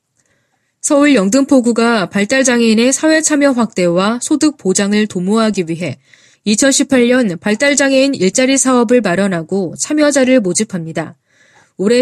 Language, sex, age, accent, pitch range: Korean, female, 20-39, native, 195-265 Hz